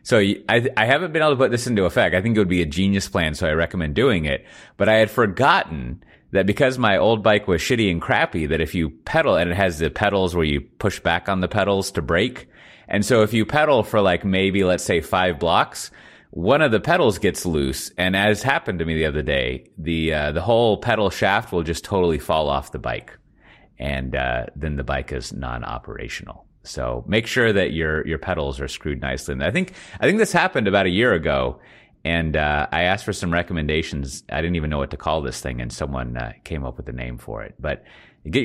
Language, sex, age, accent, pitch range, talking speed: English, male, 30-49, American, 70-105 Hz, 235 wpm